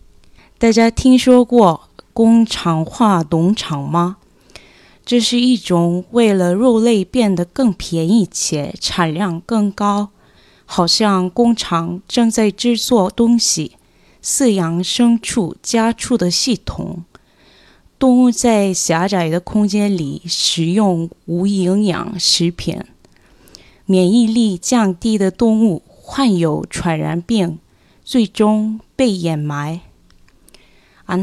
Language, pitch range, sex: Chinese, 170-230 Hz, female